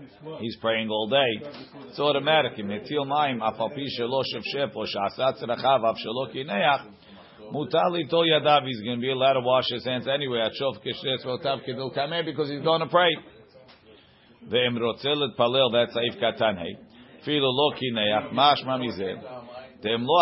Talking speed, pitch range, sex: 60 wpm, 115-145 Hz, male